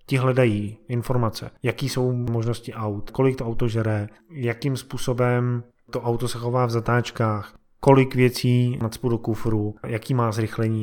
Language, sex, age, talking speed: Czech, male, 20-39, 150 wpm